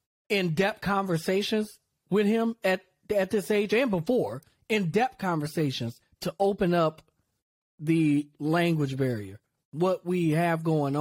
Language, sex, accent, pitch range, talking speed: English, male, American, 160-215 Hz, 120 wpm